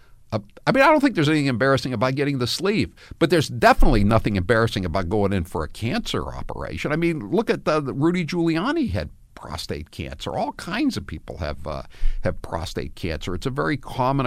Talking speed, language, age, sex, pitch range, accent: 200 wpm, English, 60-79, male, 105-165 Hz, American